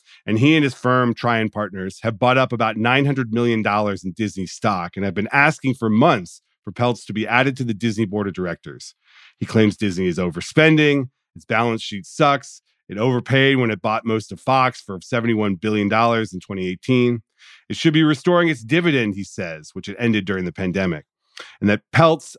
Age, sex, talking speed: 40-59, male, 195 wpm